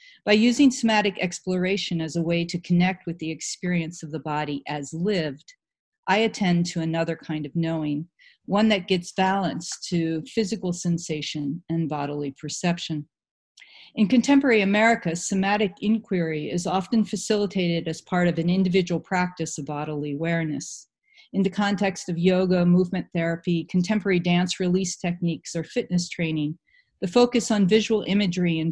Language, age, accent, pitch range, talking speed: English, 50-69, American, 160-200 Hz, 150 wpm